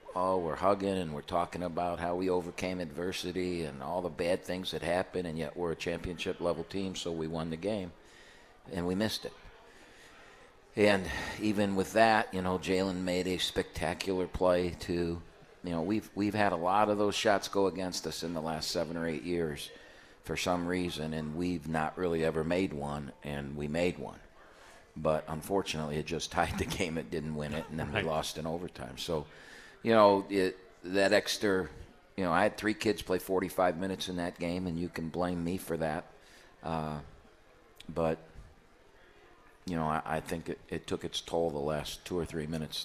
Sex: male